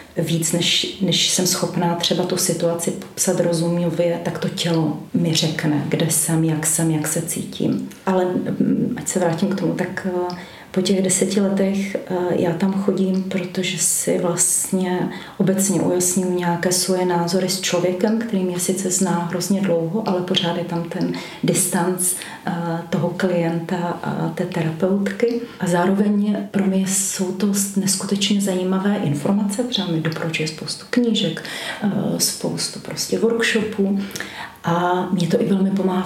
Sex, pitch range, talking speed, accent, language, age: female, 170-190 Hz, 145 wpm, native, Czech, 30-49